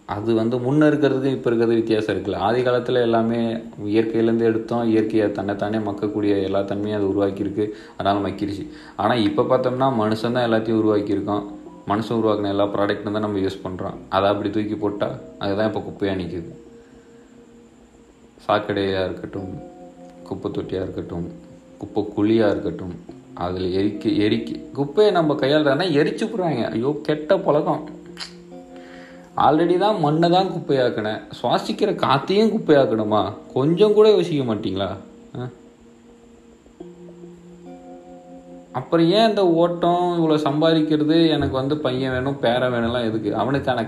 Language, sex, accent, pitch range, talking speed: Tamil, male, native, 105-145 Hz, 120 wpm